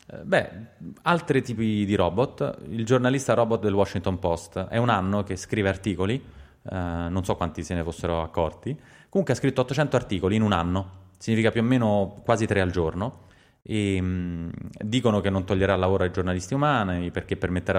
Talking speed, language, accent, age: 180 wpm, Italian, native, 20-39